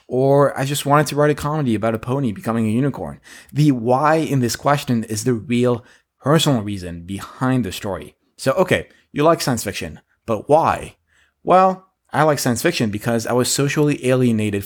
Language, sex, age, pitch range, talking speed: English, male, 20-39, 110-135 Hz, 185 wpm